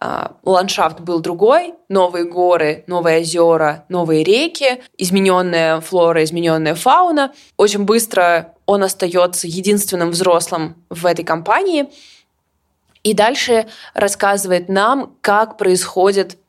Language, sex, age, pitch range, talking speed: Russian, female, 20-39, 175-245 Hz, 100 wpm